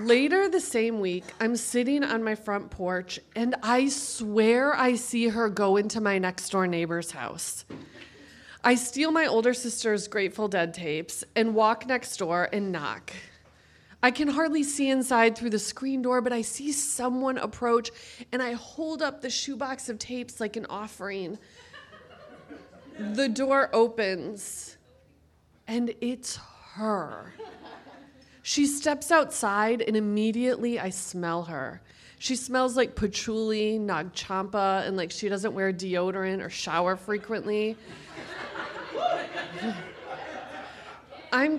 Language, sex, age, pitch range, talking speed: English, female, 20-39, 195-250 Hz, 130 wpm